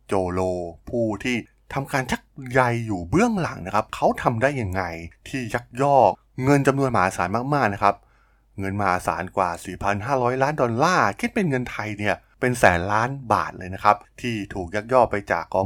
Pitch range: 95-125 Hz